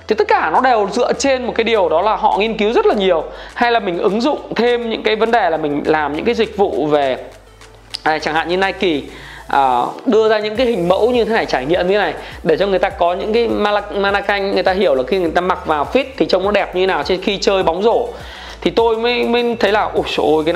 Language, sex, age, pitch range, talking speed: Vietnamese, male, 20-39, 185-240 Hz, 270 wpm